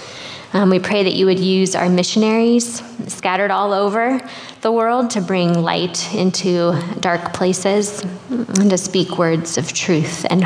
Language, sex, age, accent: English, female, 20-39, American